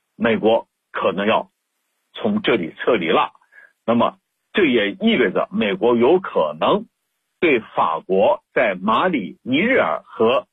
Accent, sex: native, male